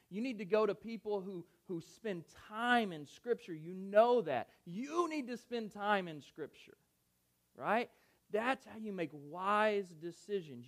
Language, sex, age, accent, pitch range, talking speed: English, male, 30-49, American, 150-230 Hz, 165 wpm